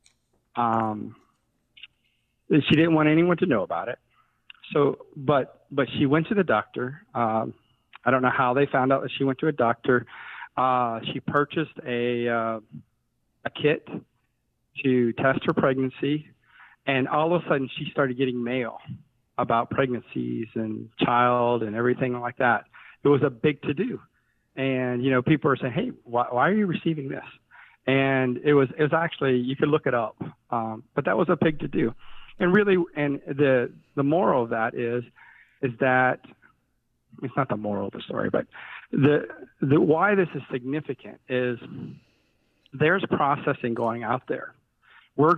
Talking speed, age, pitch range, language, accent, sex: 175 wpm, 40-59, 120-145 Hz, English, American, male